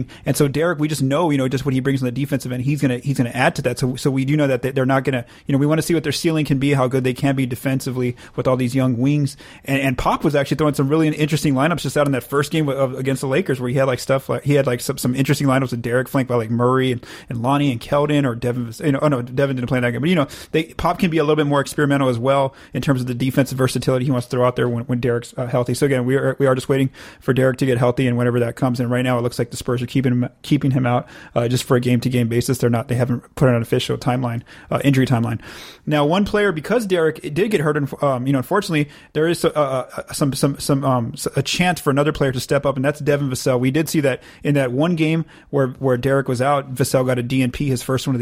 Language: English